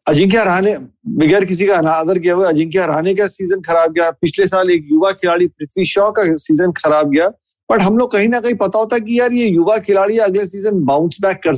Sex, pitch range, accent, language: male, 170-225 Hz, native, Hindi